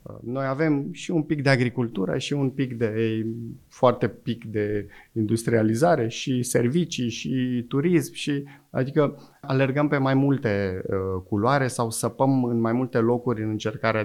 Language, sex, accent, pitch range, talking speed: Romanian, male, native, 110-135 Hz, 155 wpm